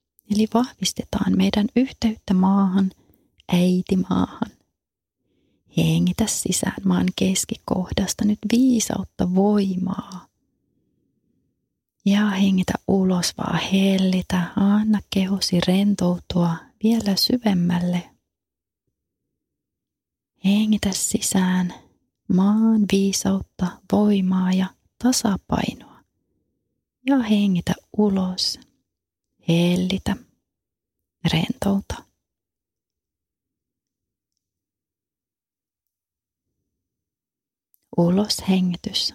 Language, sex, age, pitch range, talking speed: Finnish, female, 30-49, 170-205 Hz, 55 wpm